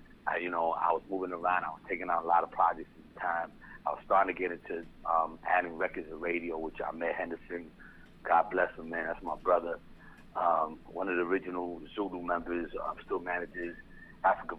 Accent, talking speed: American, 215 wpm